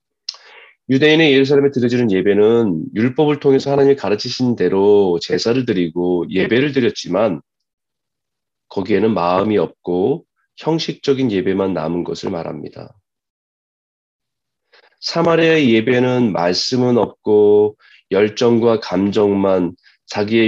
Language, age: Korean, 30-49